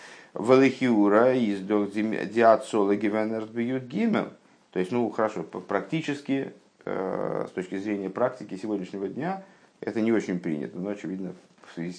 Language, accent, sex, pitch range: Russian, native, male, 95-120 Hz